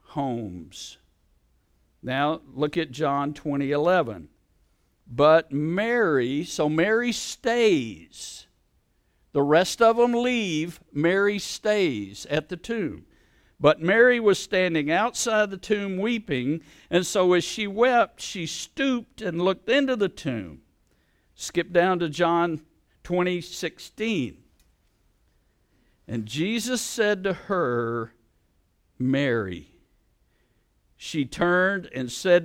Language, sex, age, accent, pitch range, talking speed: English, male, 60-79, American, 125-185 Hz, 105 wpm